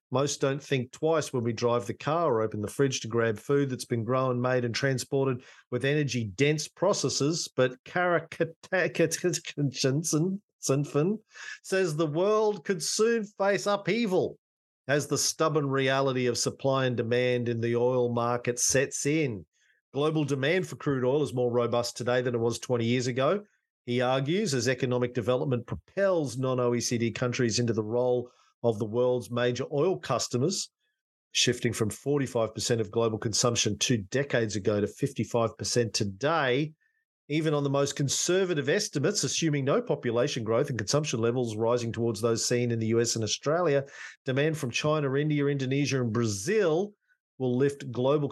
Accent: Australian